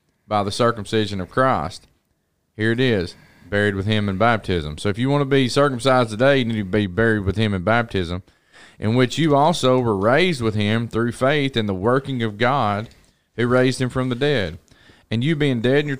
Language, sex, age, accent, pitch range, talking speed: English, male, 30-49, American, 100-130 Hz, 215 wpm